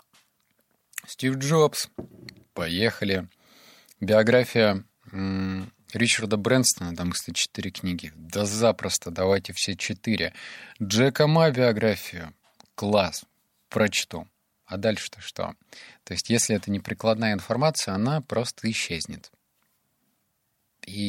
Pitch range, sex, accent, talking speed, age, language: 95-115 Hz, male, native, 95 wpm, 30-49, Russian